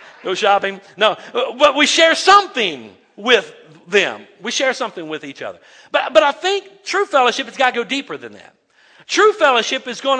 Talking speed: 190 wpm